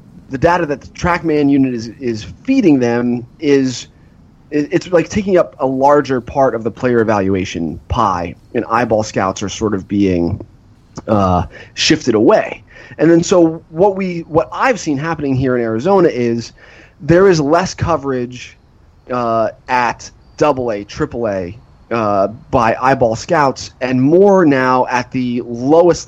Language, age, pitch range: English, 30-49, 115-155 Hz